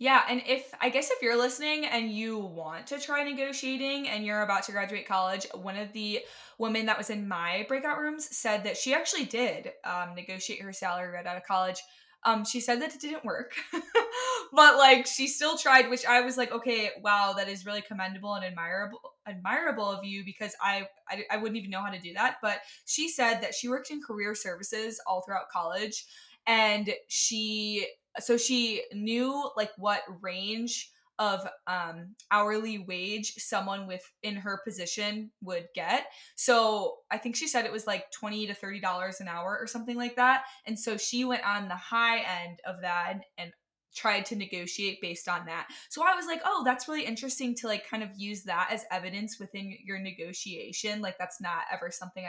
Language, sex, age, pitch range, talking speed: English, female, 20-39, 195-250 Hz, 195 wpm